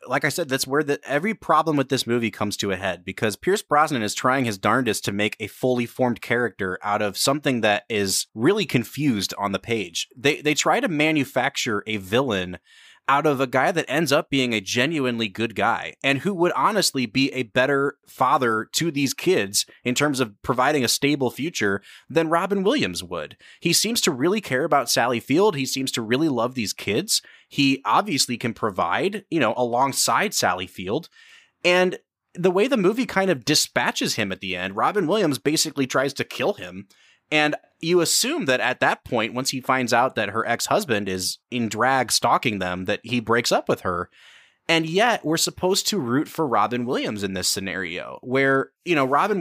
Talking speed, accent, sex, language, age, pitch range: 200 wpm, American, male, English, 20-39, 110-150 Hz